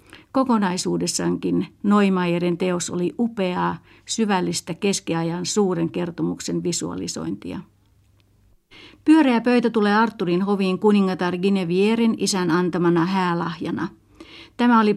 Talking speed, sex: 90 wpm, female